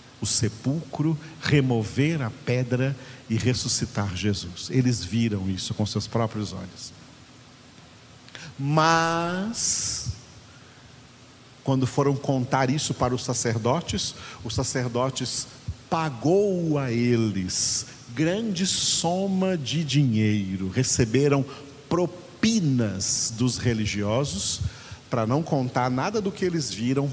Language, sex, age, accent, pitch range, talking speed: Portuguese, male, 50-69, Brazilian, 115-140 Hz, 95 wpm